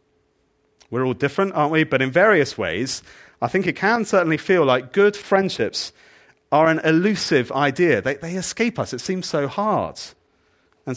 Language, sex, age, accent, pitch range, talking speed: English, male, 40-59, British, 115-160 Hz, 170 wpm